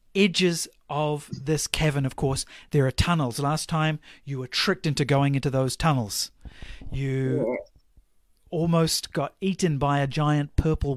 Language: English